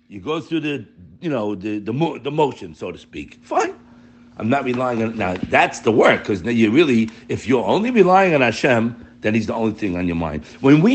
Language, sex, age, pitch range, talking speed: English, male, 60-79, 110-165 Hz, 230 wpm